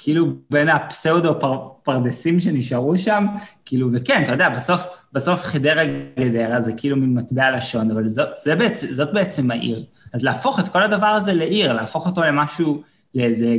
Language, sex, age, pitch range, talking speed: Hebrew, male, 20-39, 125-165 Hz, 160 wpm